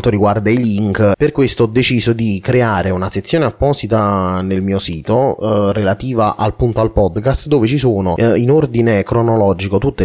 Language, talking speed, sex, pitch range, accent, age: Italian, 175 wpm, male, 100-120 Hz, native, 20-39